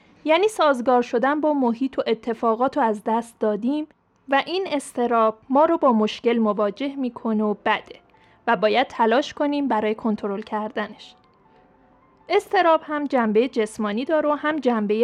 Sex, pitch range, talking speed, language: female, 225-295 Hz, 150 wpm, Persian